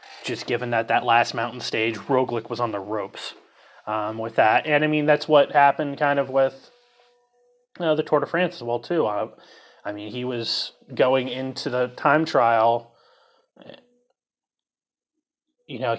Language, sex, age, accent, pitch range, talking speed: English, male, 30-49, American, 115-155 Hz, 160 wpm